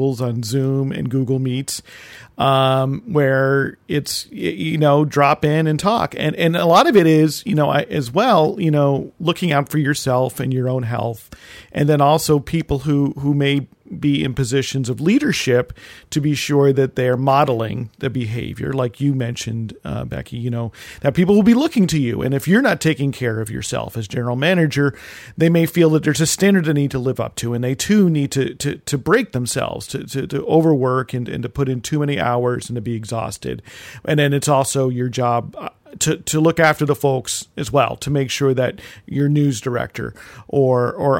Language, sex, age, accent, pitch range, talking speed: English, male, 40-59, American, 125-150 Hz, 205 wpm